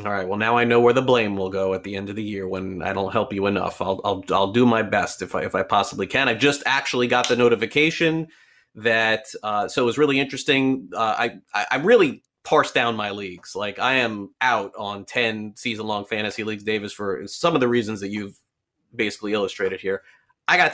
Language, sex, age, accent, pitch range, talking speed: English, male, 30-49, American, 105-130 Hz, 230 wpm